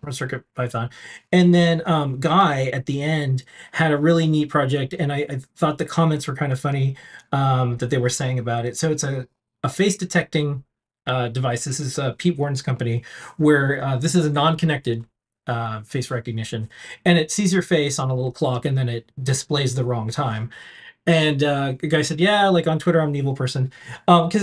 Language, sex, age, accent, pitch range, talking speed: English, male, 30-49, American, 130-165 Hz, 210 wpm